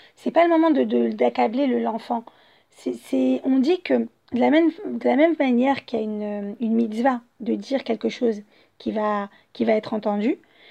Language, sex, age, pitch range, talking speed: French, female, 40-59, 220-280 Hz, 215 wpm